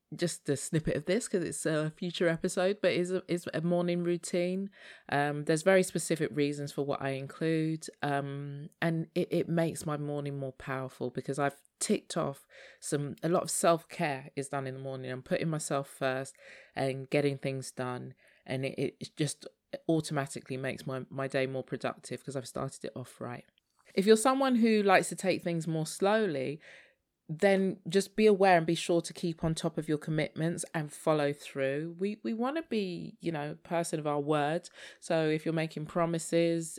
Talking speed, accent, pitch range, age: 190 wpm, British, 140-175 Hz, 20-39